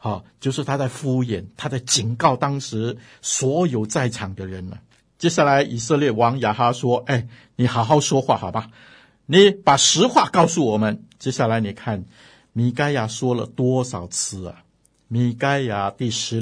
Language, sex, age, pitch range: Chinese, male, 50-69, 120-160 Hz